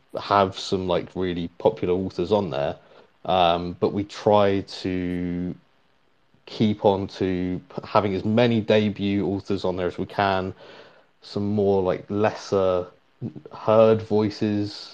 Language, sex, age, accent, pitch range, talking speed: English, male, 20-39, British, 90-110 Hz, 130 wpm